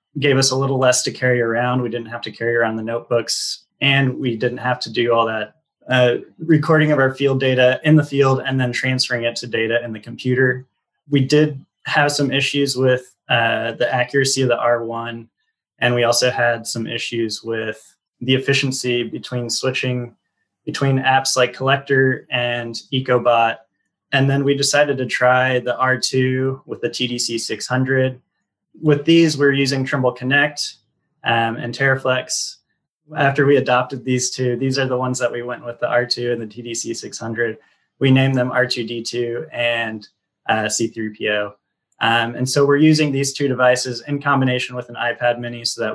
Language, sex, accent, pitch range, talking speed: English, male, American, 115-135 Hz, 175 wpm